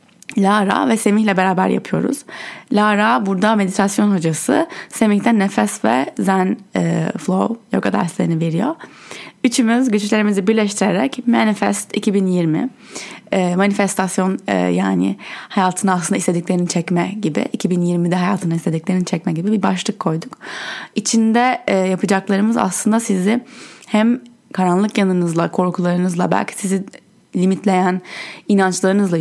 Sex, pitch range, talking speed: female, 185-225 Hz, 110 wpm